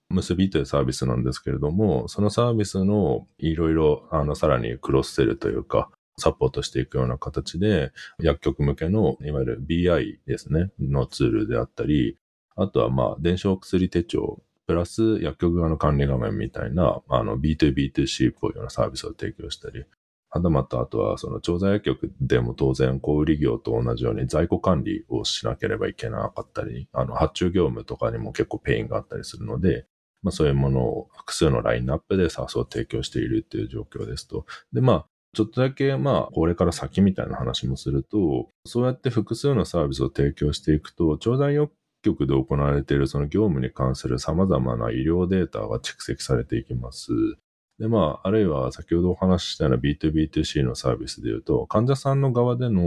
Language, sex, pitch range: Japanese, male, 65-100 Hz